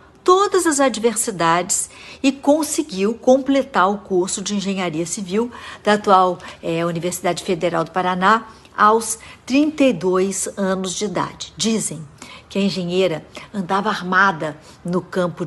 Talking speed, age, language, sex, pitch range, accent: 115 wpm, 60-79, Portuguese, female, 165-220 Hz, Brazilian